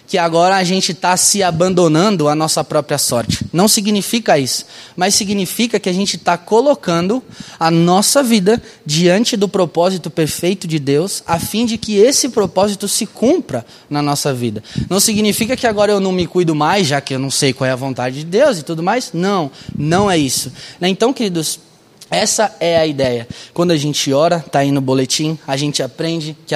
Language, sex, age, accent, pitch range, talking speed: Portuguese, male, 20-39, Brazilian, 145-195 Hz, 195 wpm